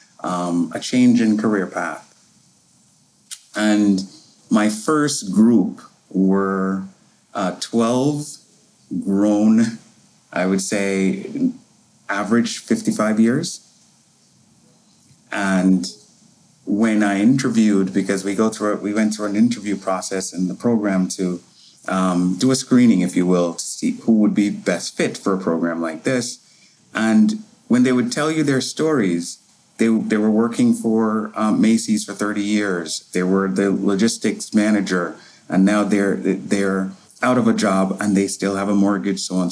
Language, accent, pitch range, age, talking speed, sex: English, American, 95-115 Hz, 30-49, 150 wpm, male